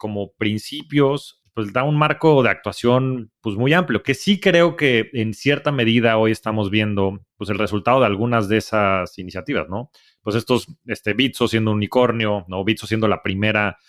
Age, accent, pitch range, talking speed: 30-49, Mexican, 105-125 Hz, 175 wpm